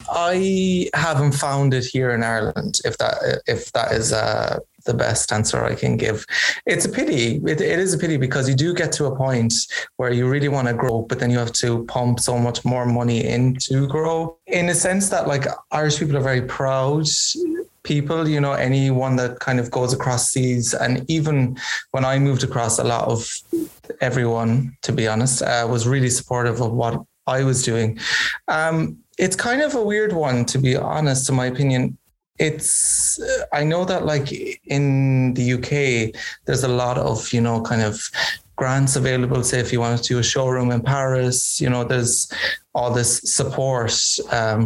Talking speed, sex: 190 wpm, male